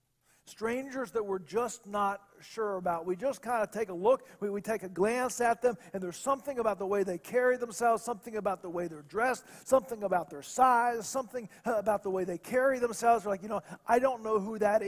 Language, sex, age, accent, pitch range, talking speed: English, male, 40-59, American, 180-220 Hz, 225 wpm